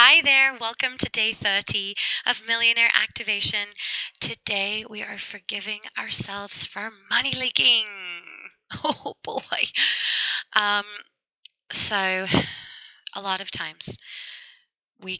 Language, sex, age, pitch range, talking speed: English, female, 20-39, 185-235 Hz, 105 wpm